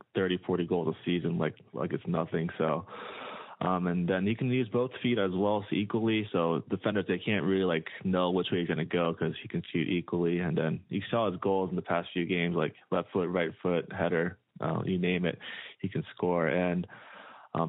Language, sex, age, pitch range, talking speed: English, male, 20-39, 90-110 Hz, 225 wpm